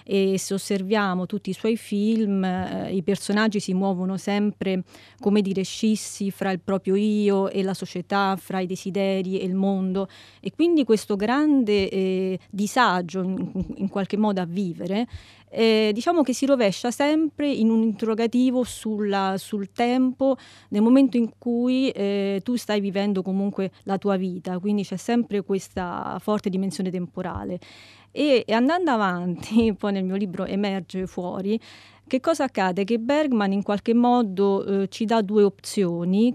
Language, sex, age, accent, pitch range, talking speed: Italian, female, 30-49, native, 190-215 Hz, 155 wpm